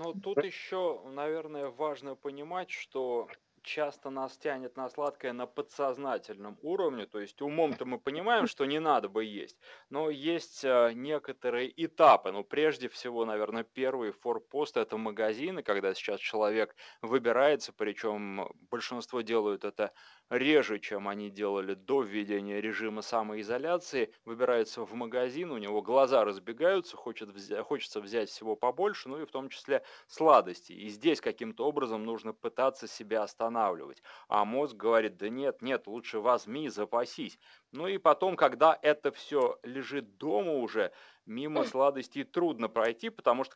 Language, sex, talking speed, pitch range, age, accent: Russian, male, 140 wpm, 110-155 Hz, 20-39, native